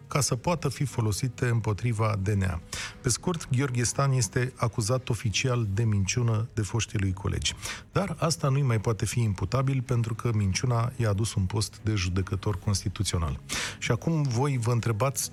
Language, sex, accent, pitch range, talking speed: Romanian, male, native, 105-130 Hz, 165 wpm